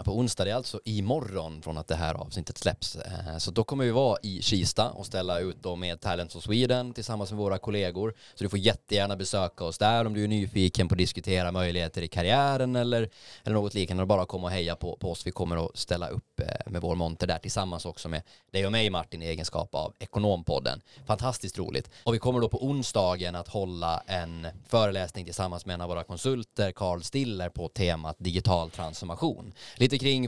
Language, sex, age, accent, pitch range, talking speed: Swedish, male, 20-39, native, 90-115 Hz, 205 wpm